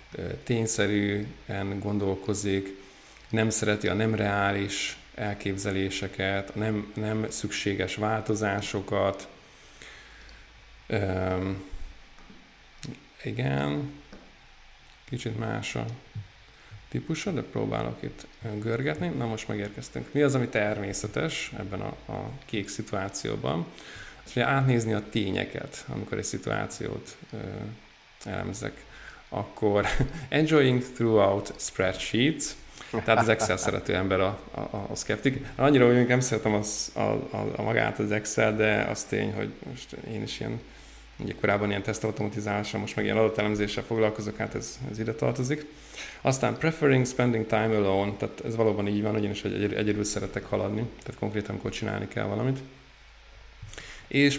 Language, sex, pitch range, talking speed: Hungarian, male, 100-115 Hz, 125 wpm